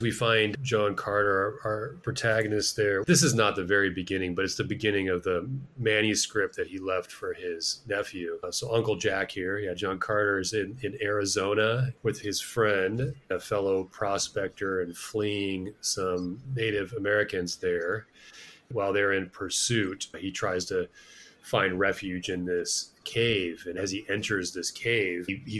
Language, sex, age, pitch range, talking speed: English, male, 30-49, 95-125 Hz, 160 wpm